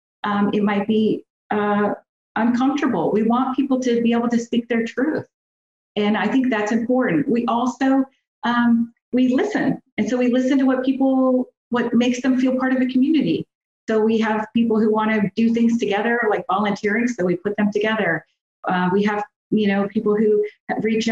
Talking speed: 190 wpm